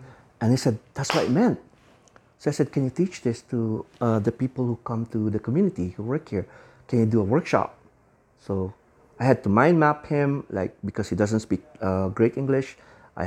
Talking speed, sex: 215 wpm, male